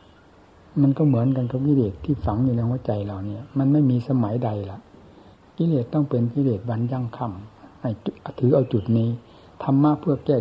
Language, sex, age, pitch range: Thai, male, 60-79, 110-140 Hz